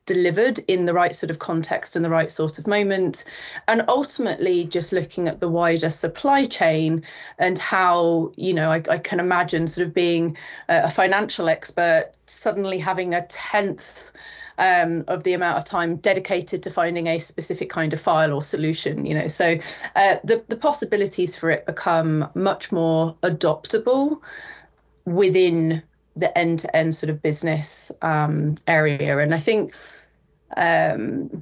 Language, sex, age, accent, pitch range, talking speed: English, female, 30-49, British, 165-195 Hz, 155 wpm